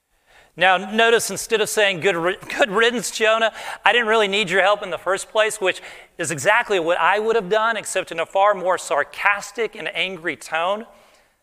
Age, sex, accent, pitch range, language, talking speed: 40-59, male, American, 160-205 Hz, English, 185 wpm